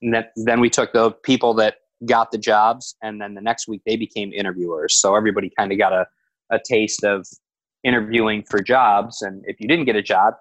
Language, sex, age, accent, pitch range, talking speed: English, male, 30-49, American, 95-115 Hz, 210 wpm